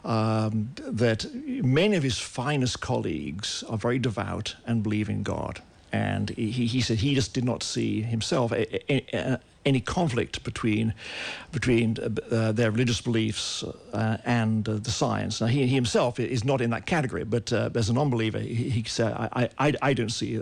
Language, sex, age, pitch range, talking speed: English, male, 50-69, 110-130 Hz, 175 wpm